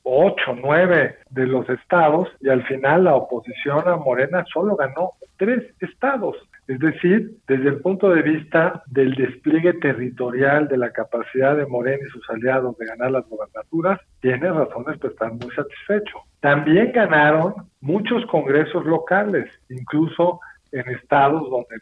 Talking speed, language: 145 wpm, Spanish